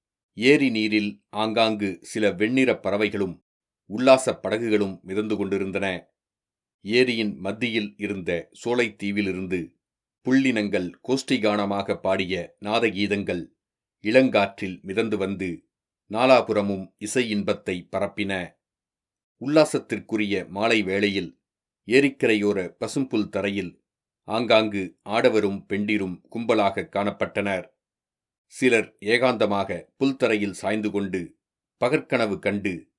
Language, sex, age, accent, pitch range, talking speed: Tamil, male, 40-59, native, 100-110 Hz, 75 wpm